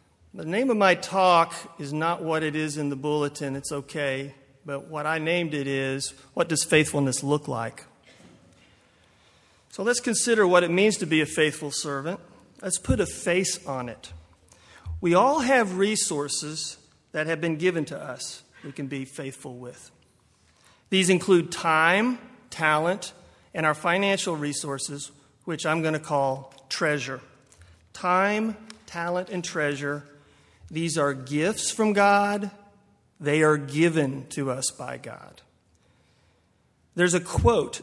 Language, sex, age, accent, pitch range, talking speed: English, male, 40-59, American, 140-180 Hz, 145 wpm